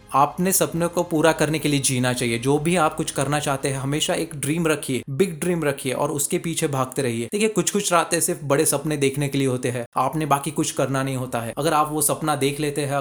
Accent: native